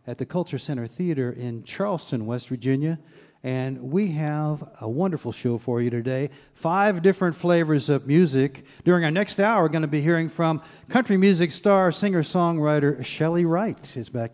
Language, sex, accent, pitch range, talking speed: English, male, American, 135-175 Hz, 170 wpm